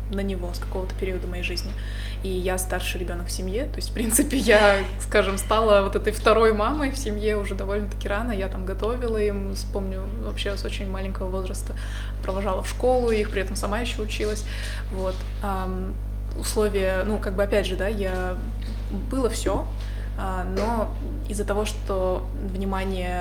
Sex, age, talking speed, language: female, 20-39, 165 wpm, Russian